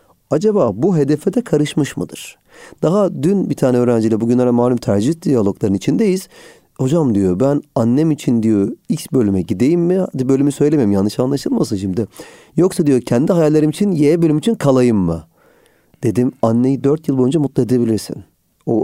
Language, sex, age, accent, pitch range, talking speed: Turkish, male, 40-59, native, 110-155 Hz, 160 wpm